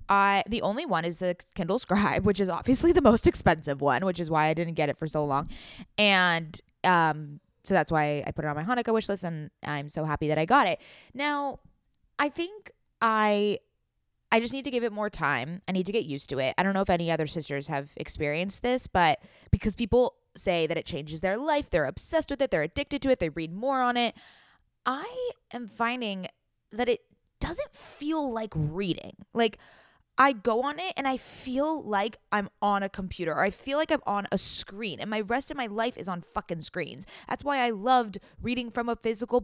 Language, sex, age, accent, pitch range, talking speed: English, female, 20-39, American, 170-245 Hz, 220 wpm